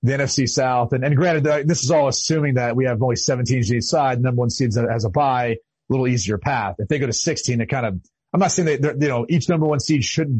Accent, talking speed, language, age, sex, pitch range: American, 270 wpm, English, 30-49, male, 120-155 Hz